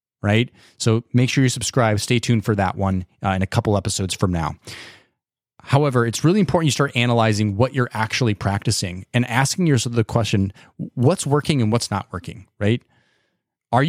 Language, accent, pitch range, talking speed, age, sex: English, American, 105-140 Hz, 180 wpm, 30-49, male